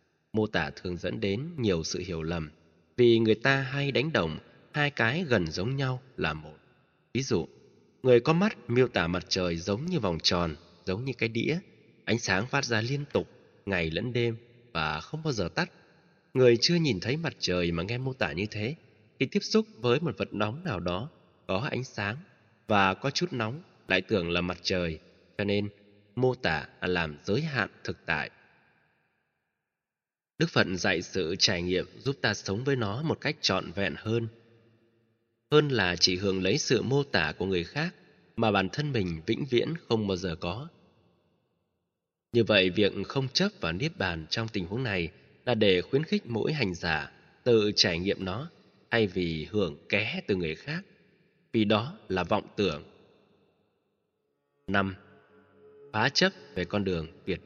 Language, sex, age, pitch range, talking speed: Vietnamese, male, 20-39, 90-130 Hz, 185 wpm